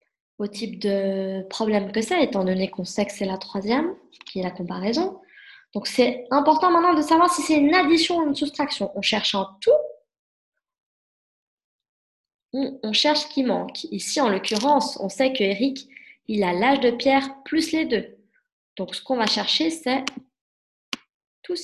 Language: French